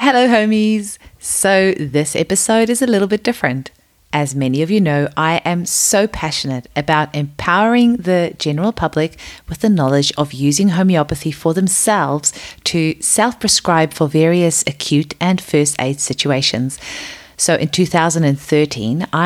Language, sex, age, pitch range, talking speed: English, female, 30-49, 145-185 Hz, 135 wpm